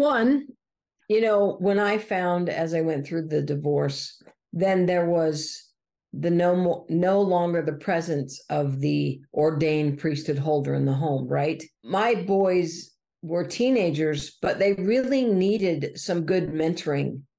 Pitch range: 155-185 Hz